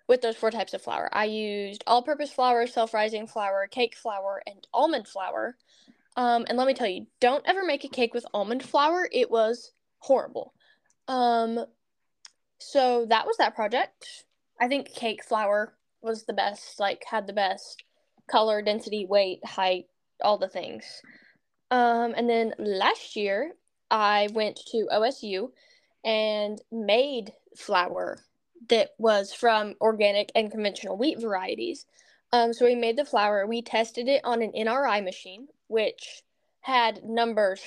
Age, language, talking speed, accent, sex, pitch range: 10-29, English, 150 wpm, American, female, 205-255 Hz